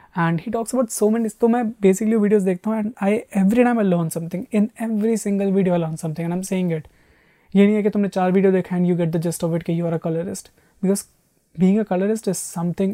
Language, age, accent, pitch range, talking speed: Hindi, 20-39, native, 160-185 Hz, 255 wpm